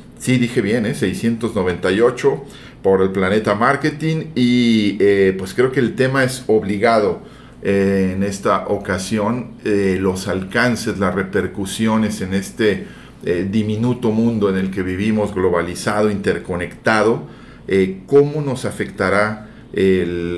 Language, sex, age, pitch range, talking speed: Spanish, male, 40-59, 95-110 Hz, 125 wpm